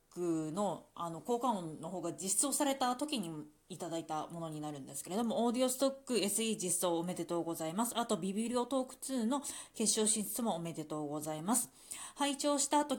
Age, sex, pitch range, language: 20-39, female, 165-235 Hz, Japanese